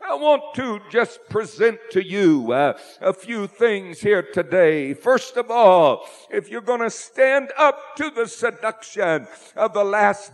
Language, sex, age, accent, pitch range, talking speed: English, male, 60-79, American, 190-235 Hz, 165 wpm